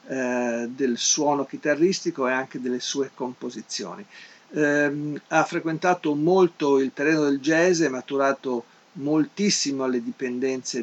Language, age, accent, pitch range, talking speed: Italian, 50-69, native, 130-155 Hz, 110 wpm